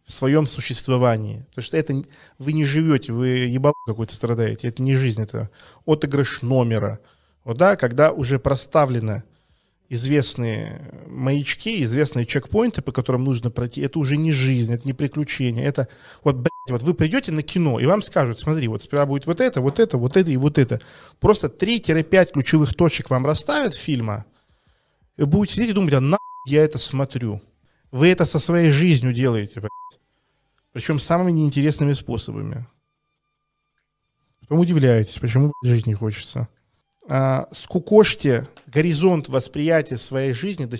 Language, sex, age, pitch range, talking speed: Russian, male, 20-39, 125-150 Hz, 155 wpm